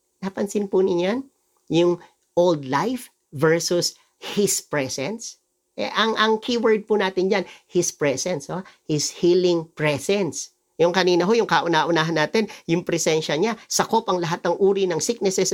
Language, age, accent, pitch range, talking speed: English, 50-69, Filipino, 155-215 Hz, 145 wpm